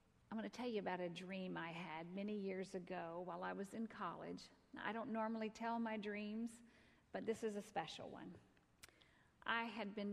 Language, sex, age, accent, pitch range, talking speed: English, female, 50-69, American, 185-235 Hz, 190 wpm